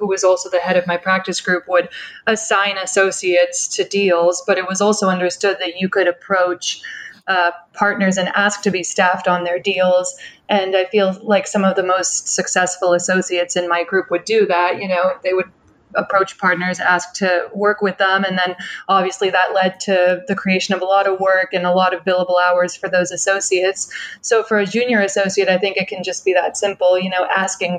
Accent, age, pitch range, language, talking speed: American, 20-39, 180-195 Hz, English, 210 wpm